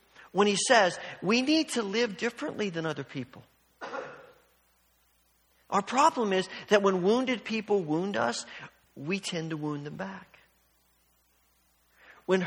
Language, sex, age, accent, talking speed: English, male, 50-69, American, 130 wpm